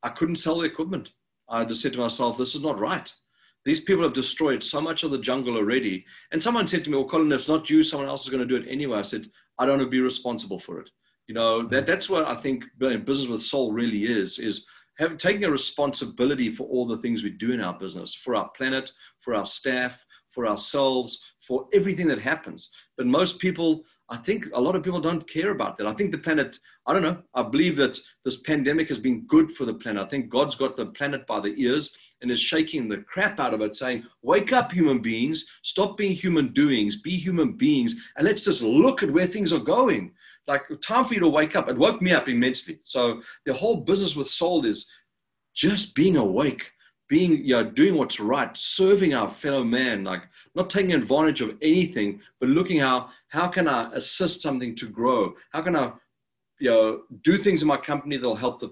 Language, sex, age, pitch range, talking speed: English, male, 40-59, 125-175 Hz, 225 wpm